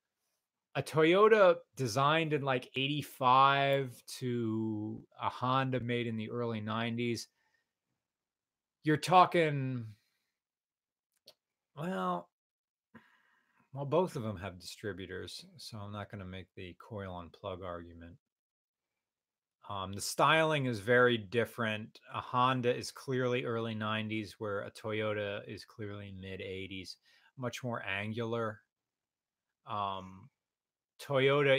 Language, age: English, 30-49